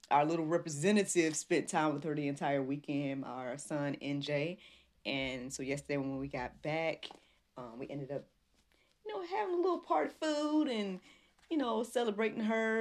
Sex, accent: female, American